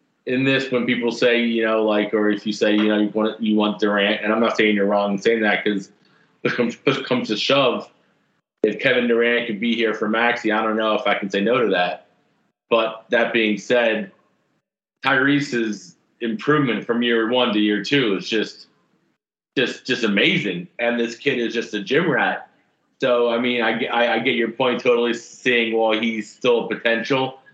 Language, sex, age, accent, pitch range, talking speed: English, male, 30-49, American, 110-125 Hz, 205 wpm